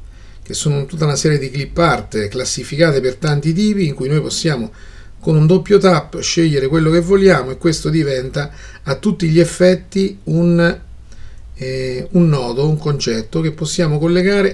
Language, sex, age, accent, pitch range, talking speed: Italian, male, 40-59, native, 110-160 Hz, 155 wpm